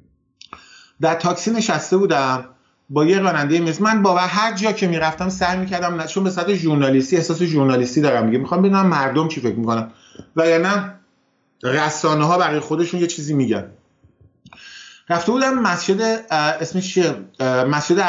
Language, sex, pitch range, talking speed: English, male, 125-170 Hz, 150 wpm